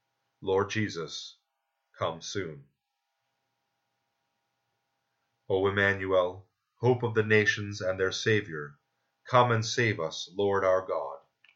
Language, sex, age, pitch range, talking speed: English, male, 30-49, 95-115 Hz, 105 wpm